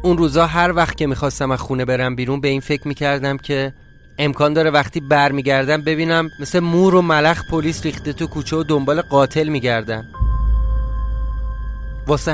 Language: Persian